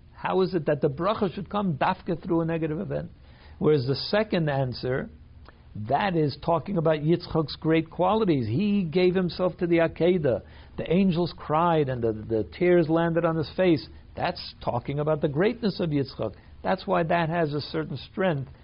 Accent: American